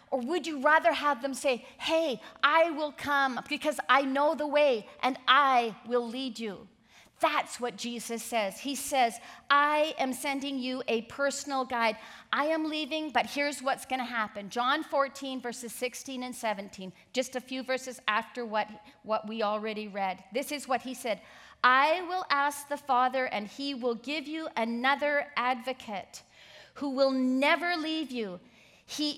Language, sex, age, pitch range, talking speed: English, female, 40-59, 240-295 Hz, 170 wpm